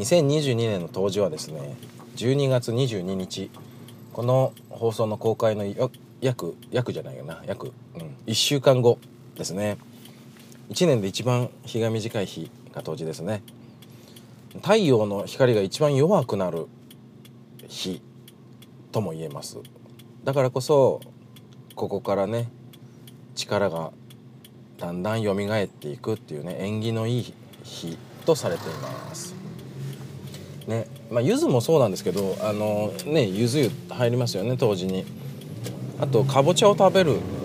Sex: male